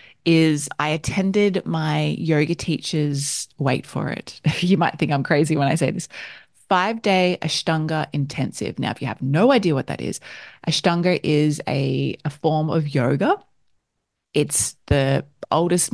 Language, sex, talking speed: English, female, 150 wpm